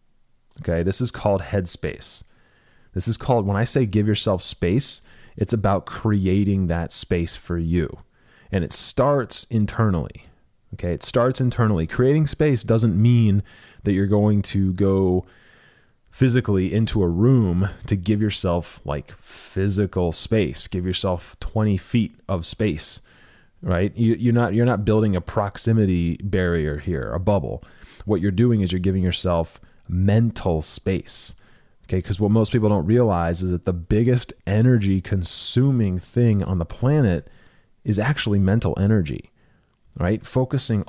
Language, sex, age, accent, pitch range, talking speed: English, male, 30-49, American, 90-115 Hz, 145 wpm